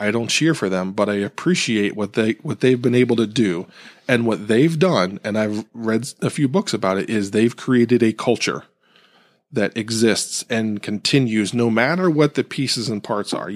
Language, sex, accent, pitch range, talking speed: English, male, American, 105-130 Hz, 200 wpm